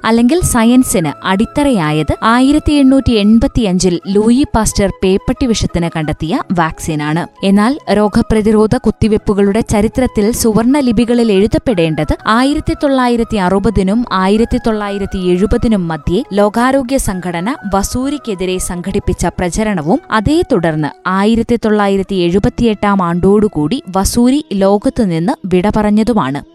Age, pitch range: 20-39, 190-250 Hz